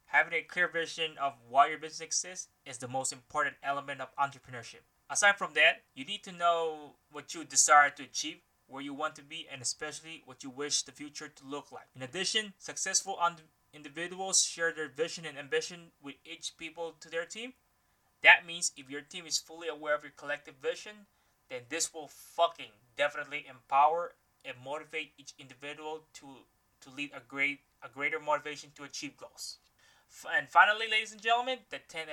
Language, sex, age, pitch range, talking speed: English, male, 20-39, 145-170 Hz, 180 wpm